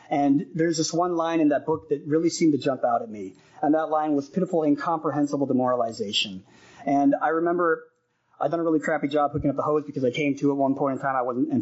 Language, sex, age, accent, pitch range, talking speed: English, male, 30-49, American, 135-155 Hz, 240 wpm